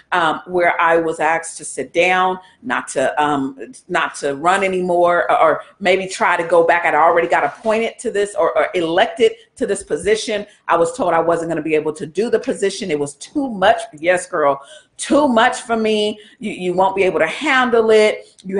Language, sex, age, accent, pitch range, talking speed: English, female, 40-59, American, 170-225 Hz, 210 wpm